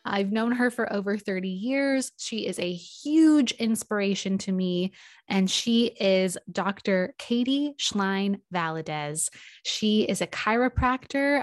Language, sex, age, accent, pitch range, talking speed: English, female, 20-39, American, 190-235 Hz, 125 wpm